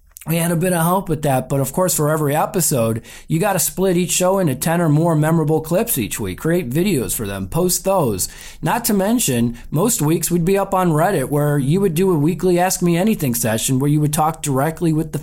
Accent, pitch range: American, 135-185 Hz